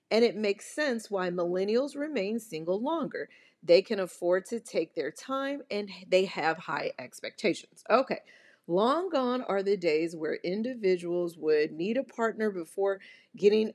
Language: English